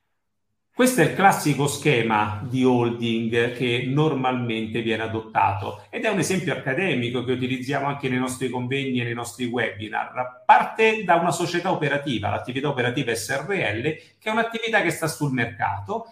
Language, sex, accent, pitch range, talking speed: Italian, male, native, 115-190 Hz, 155 wpm